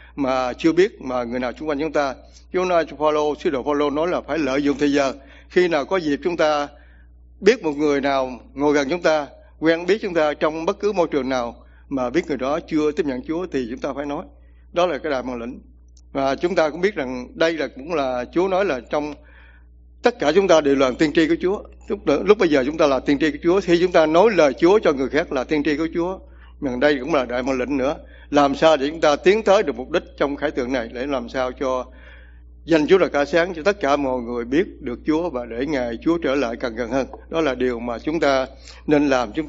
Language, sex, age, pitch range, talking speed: English, male, 60-79, 120-165 Hz, 260 wpm